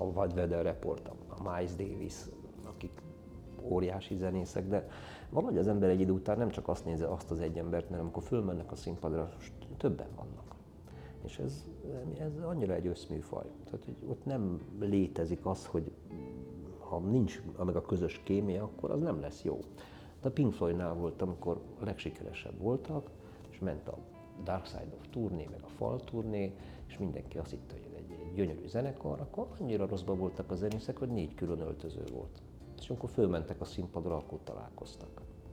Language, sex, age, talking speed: Hungarian, male, 50-69, 165 wpm